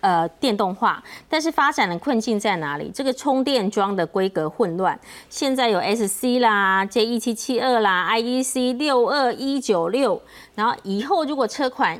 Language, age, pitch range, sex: Chinese, 30-49, 185-250 Hz, female